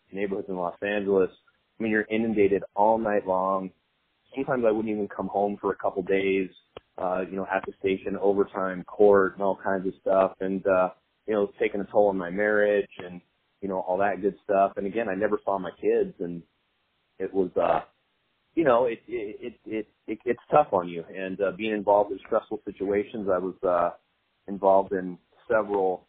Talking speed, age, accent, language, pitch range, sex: 200 wpm, 30-49, American, English, 95-105 Hz, male